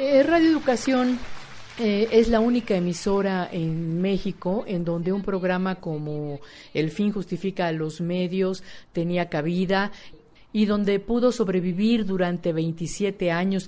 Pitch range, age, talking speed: 170-215 Hz, 50-69, 125 wpm